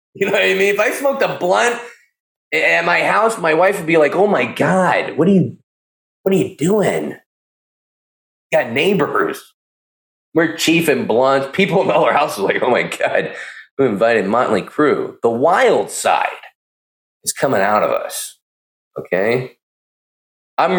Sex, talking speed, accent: male, 165 wpm, American